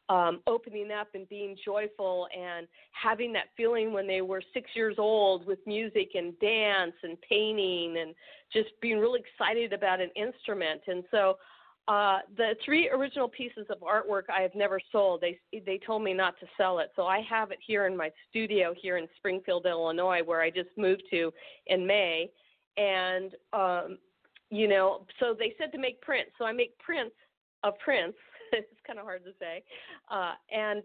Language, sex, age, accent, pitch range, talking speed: English, female, 40-59, American, 185-225 Hz, 185 wpm